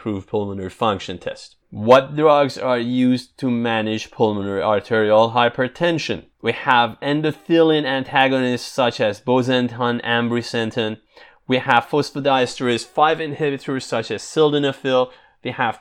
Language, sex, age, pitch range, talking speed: English, male, 30-49, 115-145 Hz, 115 wpm